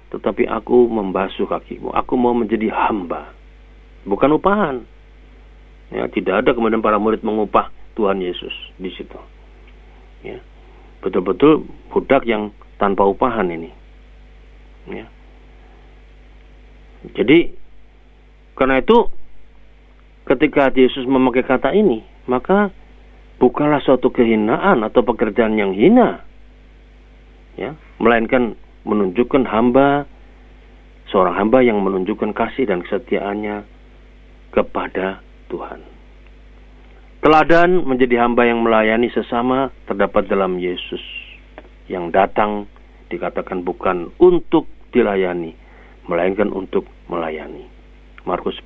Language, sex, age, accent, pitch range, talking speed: Indonesian, male, 50-69, native, 100-135 Hz, 95 wpm